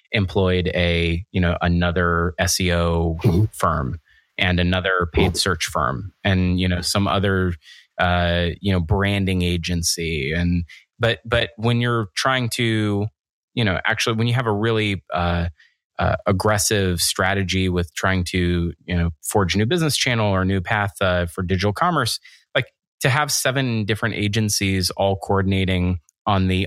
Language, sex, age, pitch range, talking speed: English, male, 30-49, 90-110 Hz, 155 wpm